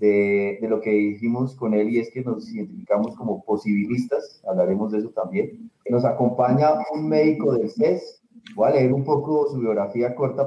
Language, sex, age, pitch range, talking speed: Spanish, male, 30-49, 115-150 Hz, 185 wpm